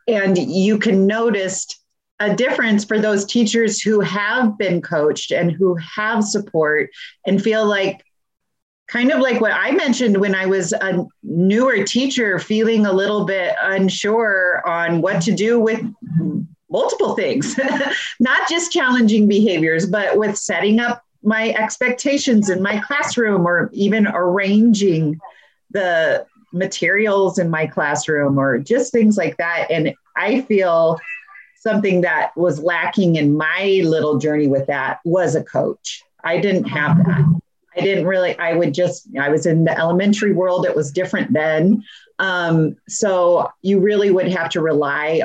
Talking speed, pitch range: 150 wpm, 170-220 Hz